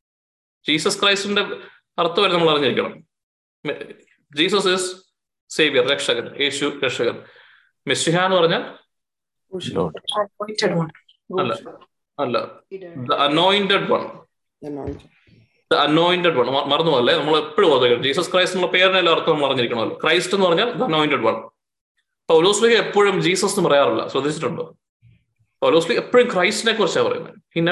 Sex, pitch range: male, 165-210 Hz